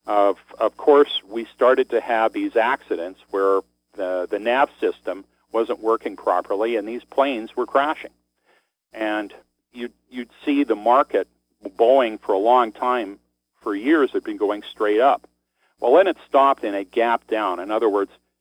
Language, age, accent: English, 50-69, American